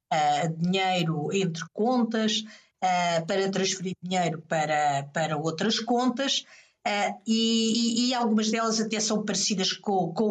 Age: 50-69